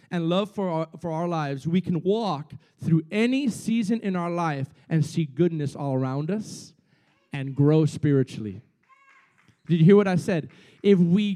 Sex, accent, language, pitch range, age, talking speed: male, American, English, 160-200 Hz, 40-59, 175 wpm